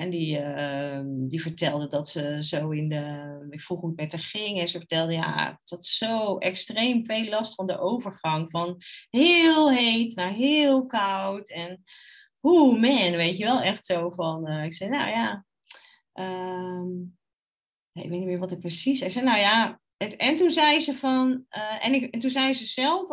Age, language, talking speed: 30-49, Dutch, 200 wpm